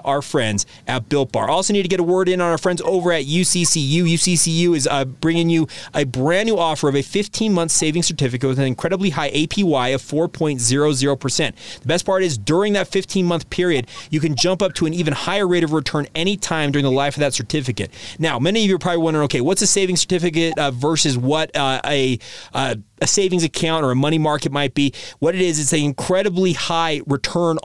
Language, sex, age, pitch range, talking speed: English, male, 30-49, 140-175 Hz, 220 wpm